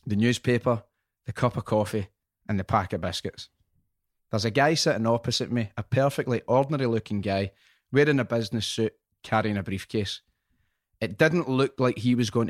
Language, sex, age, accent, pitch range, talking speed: English, male, 30-49, British, 105-130 Hz, 175 wpm